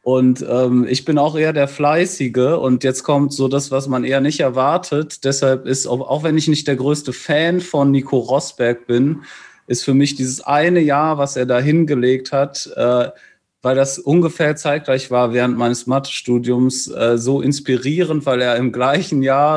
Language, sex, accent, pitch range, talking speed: German, male, German, 125-145 Hz, 180 wpm